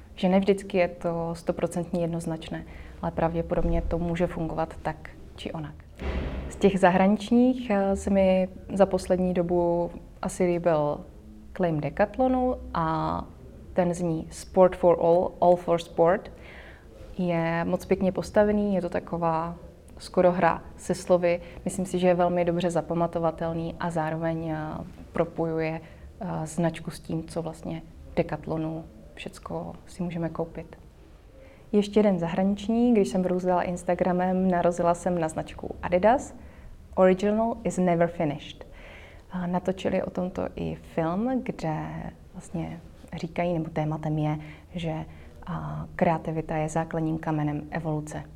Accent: native